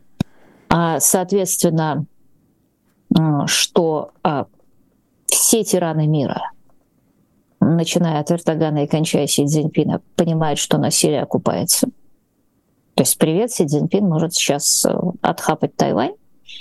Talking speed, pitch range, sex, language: 95 wpm, 165-225 Hz, female, Russian